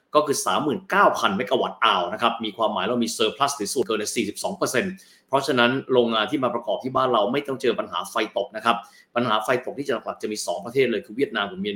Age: 20-39